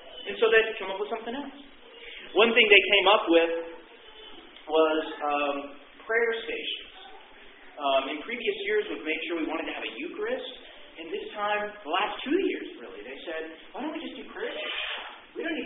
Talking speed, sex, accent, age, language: 195 wpm, male, American, 40-59, English